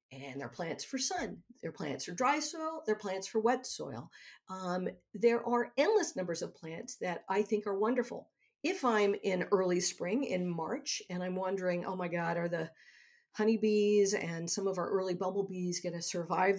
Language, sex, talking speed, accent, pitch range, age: English, female, 190 wpm, American, 175-220 Hz, 50-69